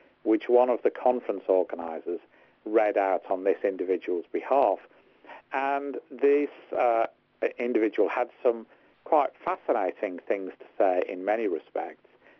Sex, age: male, 50-69